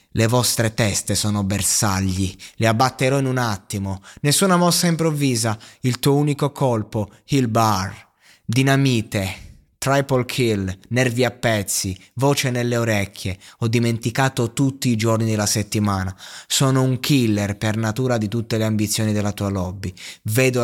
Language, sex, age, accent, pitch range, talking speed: Italian, male, 20-39, native, 105-135 Hz, 140 wpm